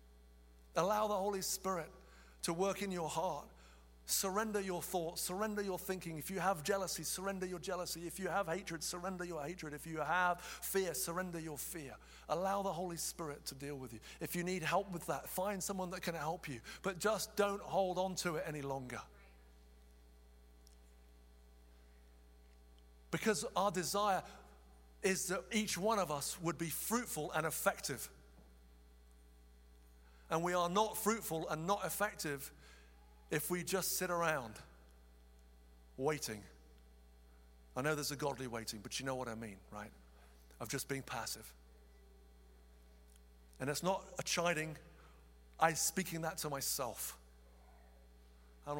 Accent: British